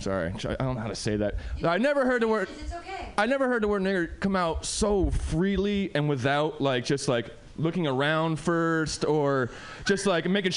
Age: 20-39